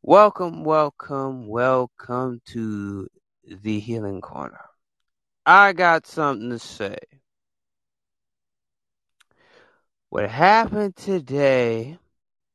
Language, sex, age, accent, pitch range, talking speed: English, male, 20-39, American, 105-125 Hz, 70 wpm